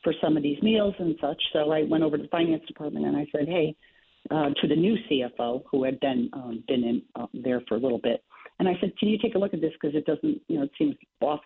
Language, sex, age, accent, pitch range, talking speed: English, female, 50-69, American, 145-205 Hz, 285 wpm